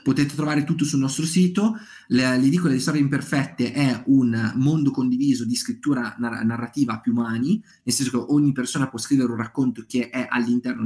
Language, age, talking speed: Italian, 30-49, 195 wpm